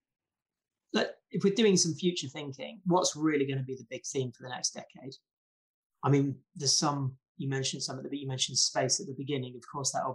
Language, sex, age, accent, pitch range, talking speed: English, male, 30-49, British, 135-160 Hz, 220 wpm